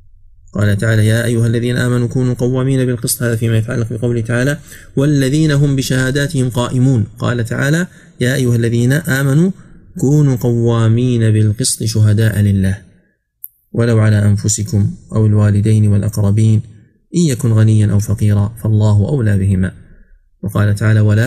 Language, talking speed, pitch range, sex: Arabic, 130 wpm, 105-125 Hz, male